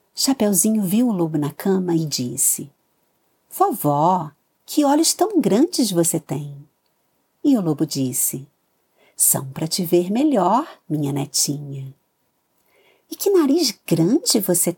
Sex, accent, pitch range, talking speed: female, Brazilian, 150-210 Hz, 125 wpm